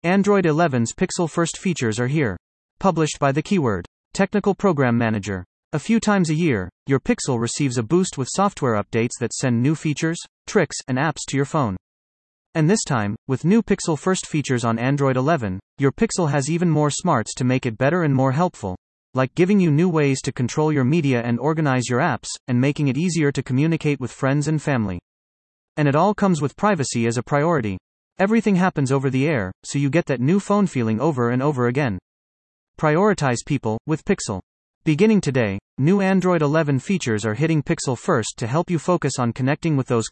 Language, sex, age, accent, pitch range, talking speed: English, male, 30-49, American, 120-170 Hz, 195 wpm